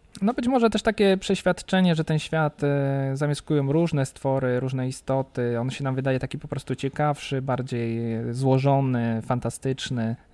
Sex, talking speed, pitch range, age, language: male, 145 wpm, 135-170 Hz, 20-39, Polish